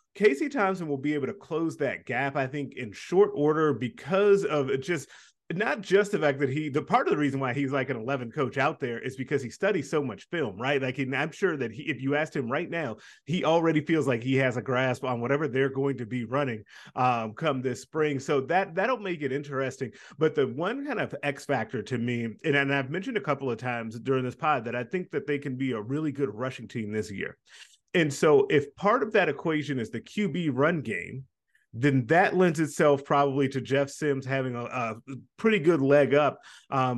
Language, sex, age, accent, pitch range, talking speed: English, male, 30-49, American, 125-150 Hz, 230 wpm